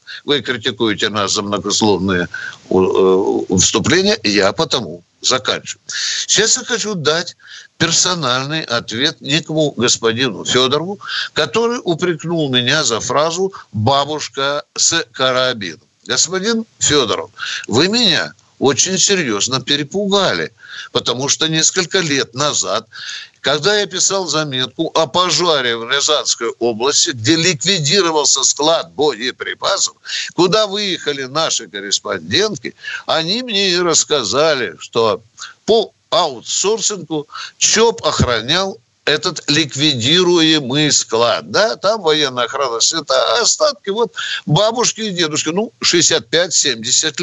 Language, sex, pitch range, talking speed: Russian, male, 130-195 Hz, 100 wpm